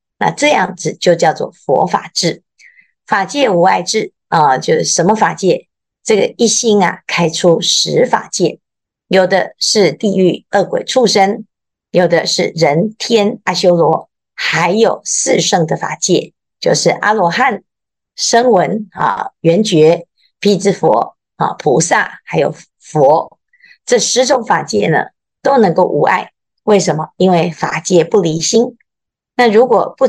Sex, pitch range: female, 175-250 Hz